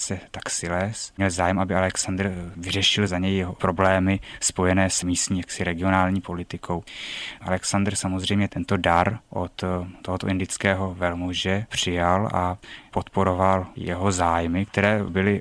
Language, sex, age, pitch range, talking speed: Czech, male, 20-39, 90-100 Hz, 130 wpm